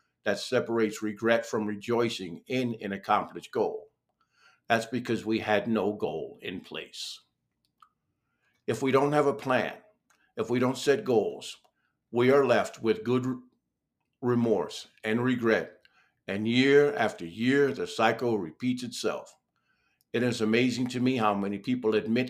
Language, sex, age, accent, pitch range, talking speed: English, male, 50-69, American, 105-125 Hz, 145 wpm